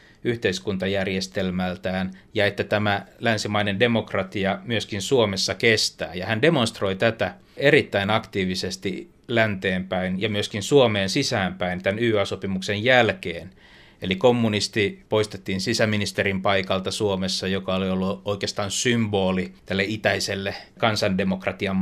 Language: Finnish